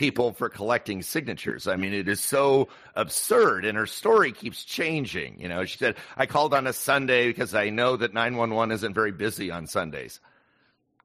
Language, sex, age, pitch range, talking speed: English, male, 50-69, 105-130 Hz, 190 wpm